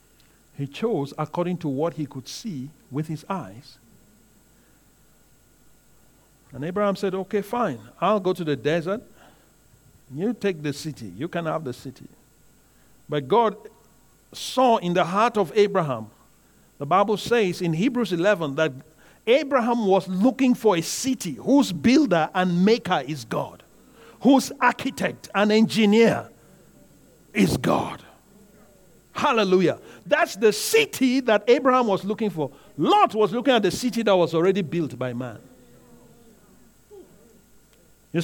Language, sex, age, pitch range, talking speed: English, male, 50-69, 160-235 Hz, 135 wpm